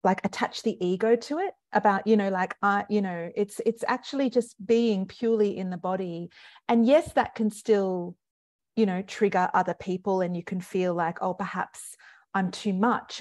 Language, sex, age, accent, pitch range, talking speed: English, female, 40-59, Australian, 180-210 Hz, 190 wpm